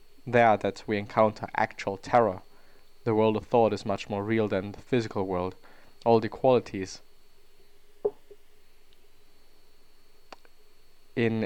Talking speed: 115 wpm